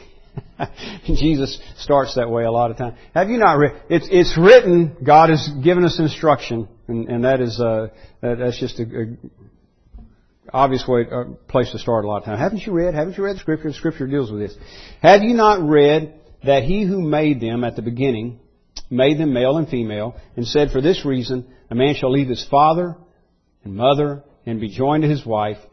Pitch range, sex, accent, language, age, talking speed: 110-145 Hz, male, American, English, 50-69, 205 wpm